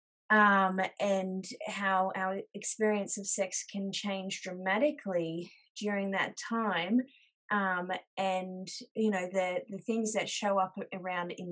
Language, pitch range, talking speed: English, 185-215 Hz, 130 wpm